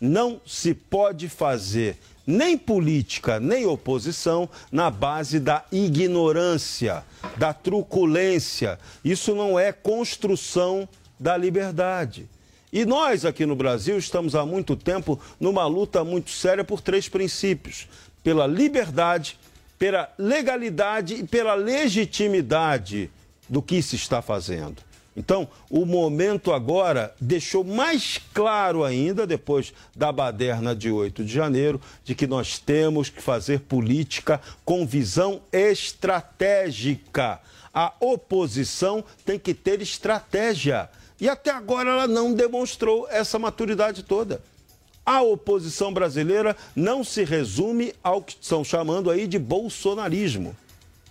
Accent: Brazilian